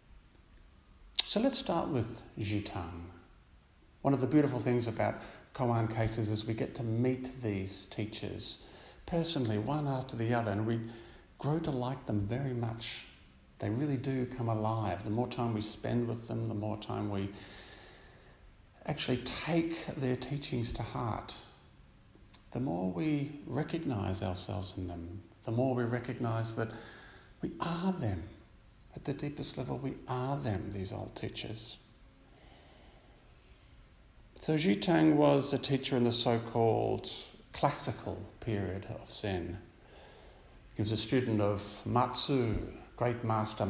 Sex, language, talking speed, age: male, English, 135 wpm, 50-69